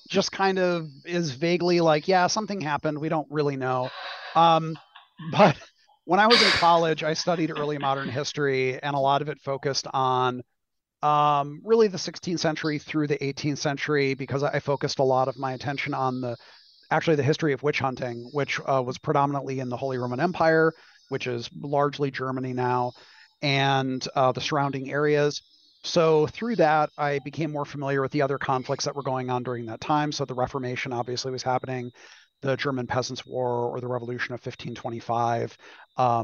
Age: 30-49